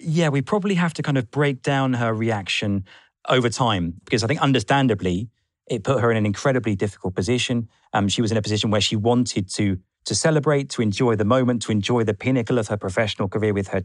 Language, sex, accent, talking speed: English, male, British, 220 wpm